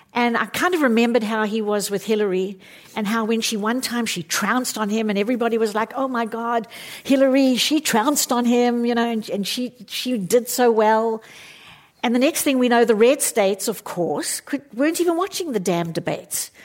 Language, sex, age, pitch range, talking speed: English, female, 50-69, 215-270 Hz, 215 wpm